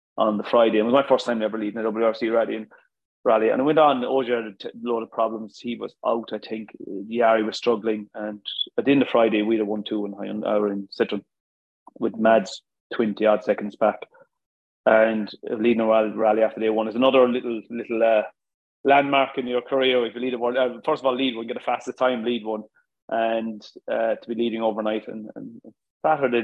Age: 30-49